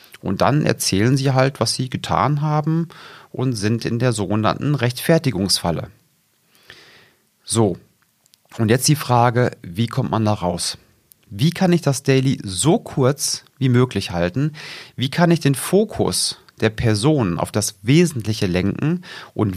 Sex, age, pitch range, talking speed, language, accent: male, 40-59, 110-150 Hz, 145 wpm, German, German